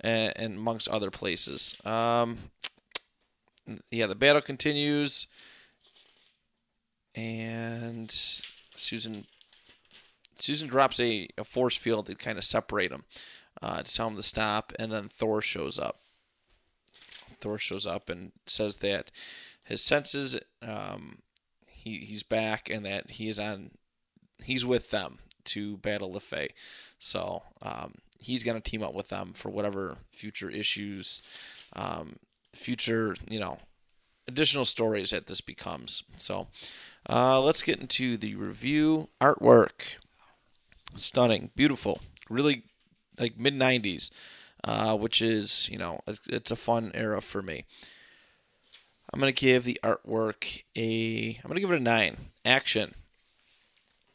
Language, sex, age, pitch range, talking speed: English, male, 20-39, 105-125 Hz, 130 wpm